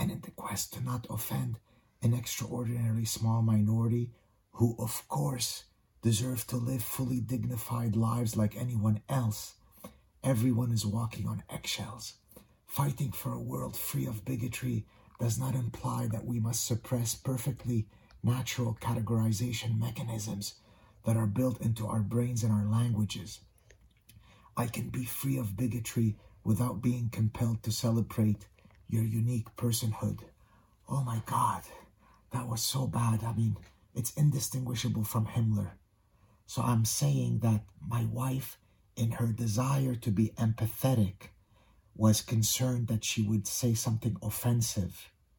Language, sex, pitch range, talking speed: English, male, 105-120 Hz, 135 wpm